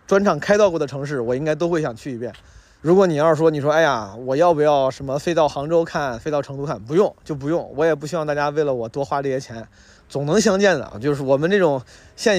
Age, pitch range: 20-39, 125-165 Hz